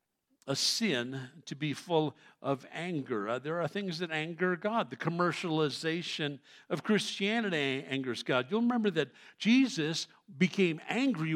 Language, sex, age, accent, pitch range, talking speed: English, male, 60-79, American, 170-235 Hz, 135 wpm